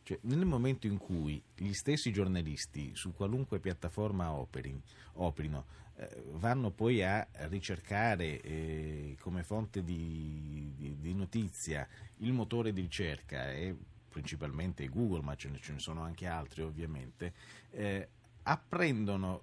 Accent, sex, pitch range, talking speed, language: native, male, 85-120 Hz, 115 wpm, Italian